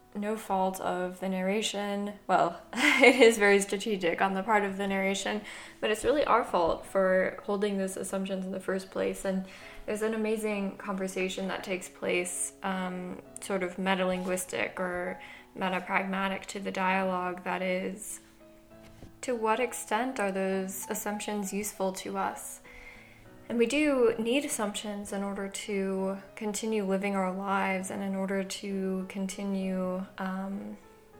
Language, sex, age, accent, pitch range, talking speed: English, female, 10-29, American, 185-205 Hz, 145 wpm